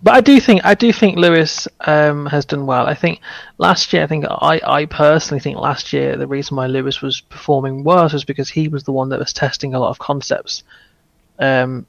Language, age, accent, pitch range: English, 30-49, British, 130-150 Hz